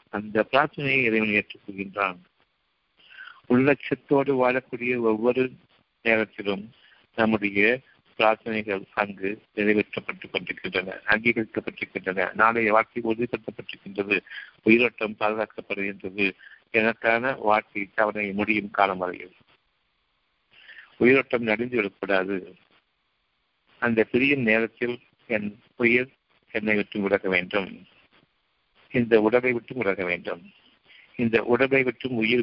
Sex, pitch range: male, 105-125 Hz